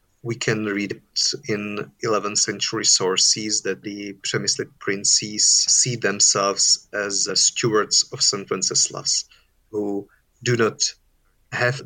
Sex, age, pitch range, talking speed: male, 30-49, 105-120 Hz, 115 wpm